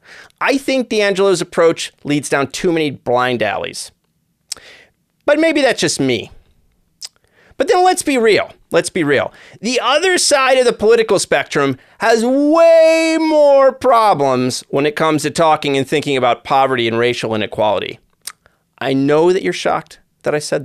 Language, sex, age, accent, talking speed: English, male, 30-49, American, 155 wpm